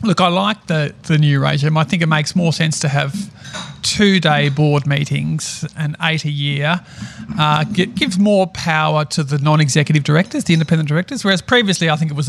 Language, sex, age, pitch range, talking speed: English, male, 40-59, 150-180 Hz, 195 wpm